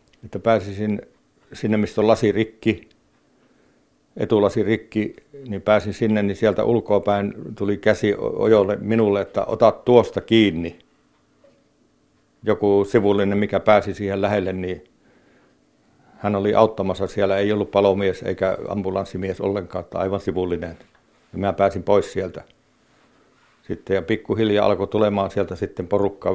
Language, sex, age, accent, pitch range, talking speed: Finnish, male, 60-79, native, 95-105 Hz, 125 wpm